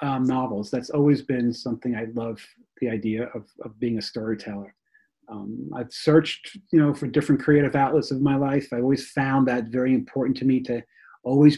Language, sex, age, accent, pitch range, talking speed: English, male, 30-49, American, 125-150 Hz, 200 wpm